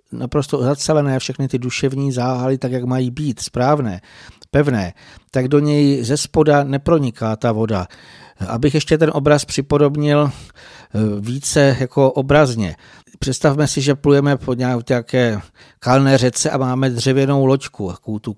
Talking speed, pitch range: 135 wpm, 120-140 Hz